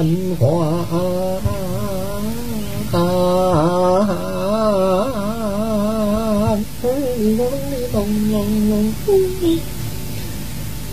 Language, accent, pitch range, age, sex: Chinese, American, 215-325 Hz, 30-49, male